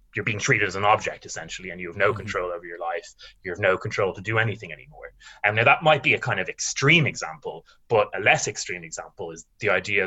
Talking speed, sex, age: 245 wpm, male, 20-39